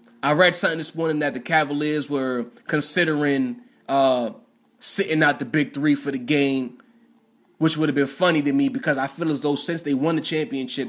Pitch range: 145-180 Hz